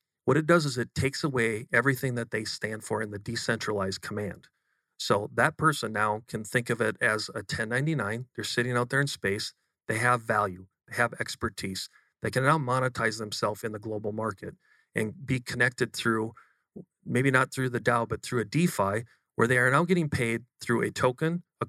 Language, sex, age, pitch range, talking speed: English, male, 40-59, 110-130 Hz, 195 wpm